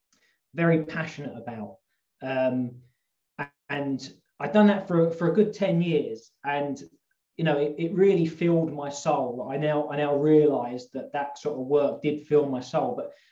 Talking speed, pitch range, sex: 170 wpm, 140-165 Hz, male